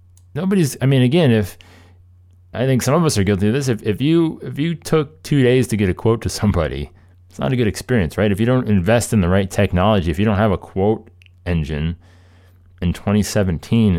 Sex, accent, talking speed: male, American, 220 wpm